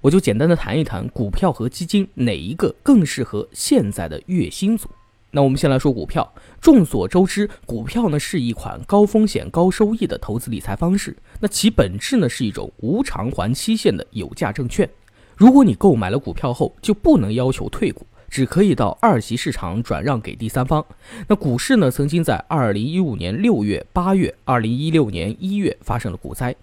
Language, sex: Chinese, male